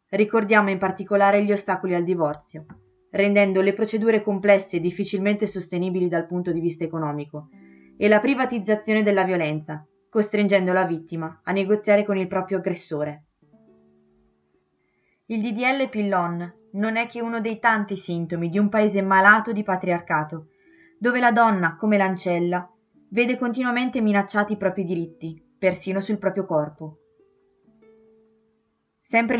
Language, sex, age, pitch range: Italian, female, 20-39, 175-215 Hz